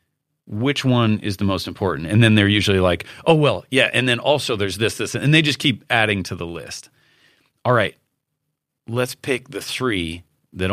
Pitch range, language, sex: 100-140 Hz, English, male